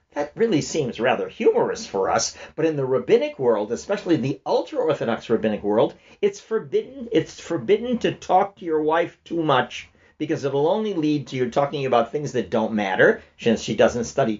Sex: male